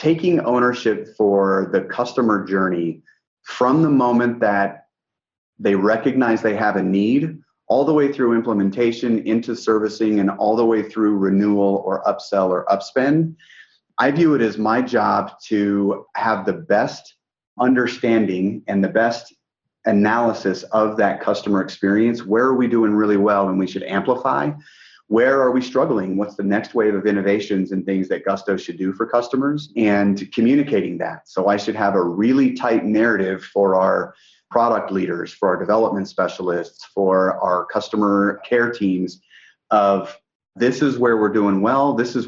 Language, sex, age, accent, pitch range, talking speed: English, male, 30-49, American, 100-120 Hz, 160 wpm